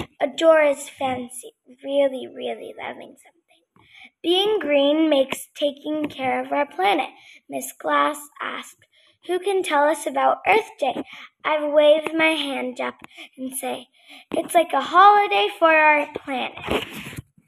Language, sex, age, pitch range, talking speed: English, female, 10-29, 275-345 Hz, 130 wpm